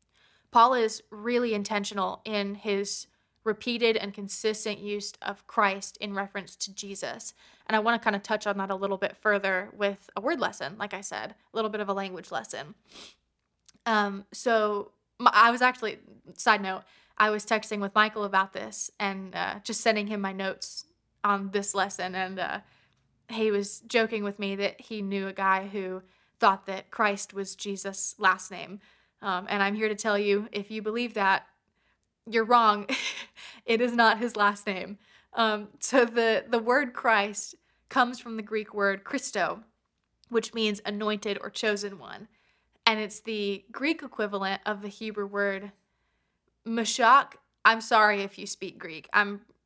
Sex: female